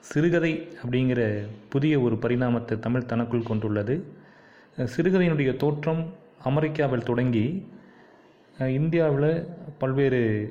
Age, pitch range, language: 30-49, 115-150 Hz, Tamil